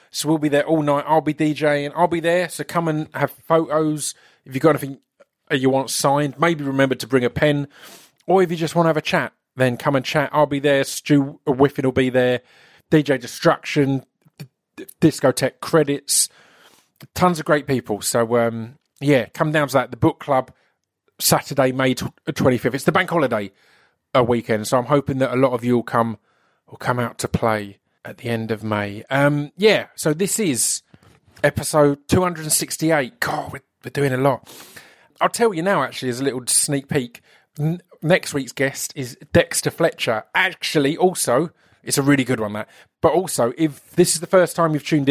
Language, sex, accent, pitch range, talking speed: English, male, British, 130-155 Hz, 195 wpm